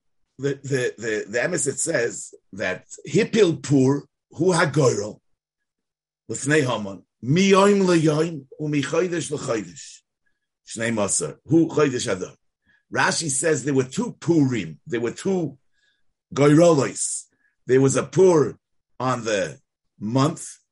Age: 50-69